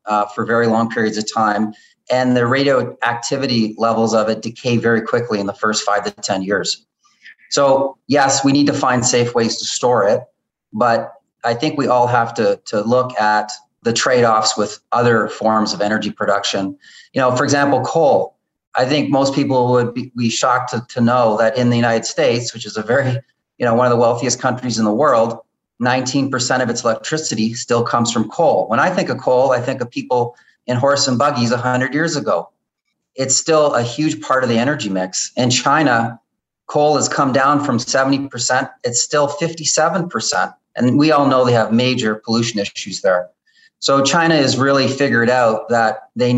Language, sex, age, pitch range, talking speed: English, male, 30-49, 110-135 Hz, 195 wpm